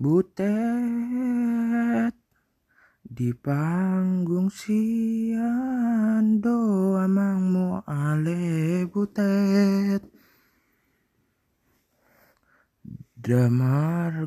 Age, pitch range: 20-39, 165-205 Hz